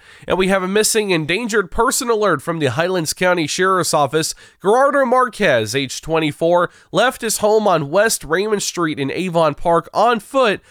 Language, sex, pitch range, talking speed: English, male, 155-220 Hz, 170 wpm